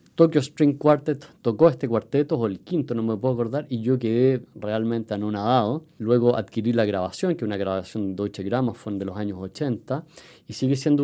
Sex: male